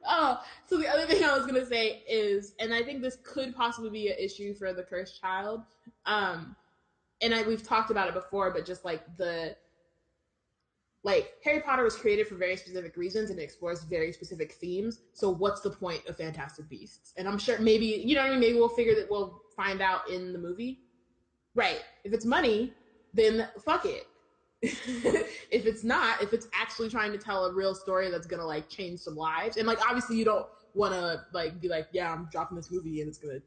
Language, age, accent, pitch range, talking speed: English, 20-39, American, 170-230 Hz, 215 wpm